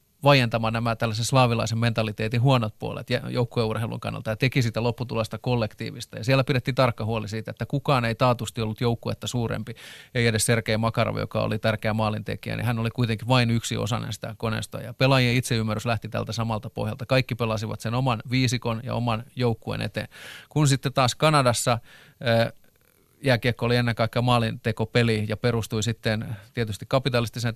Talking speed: 165 wpm